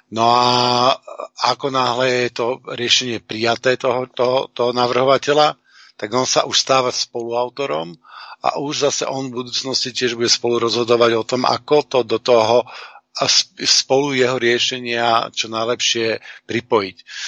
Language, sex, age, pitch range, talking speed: Czech, male, 50-69, 115-130 Hz, 140 wpm